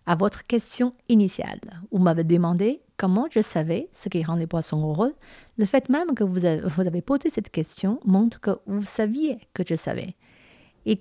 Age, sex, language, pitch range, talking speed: 50-69, female, French, 180-235 Hz, 190 wpm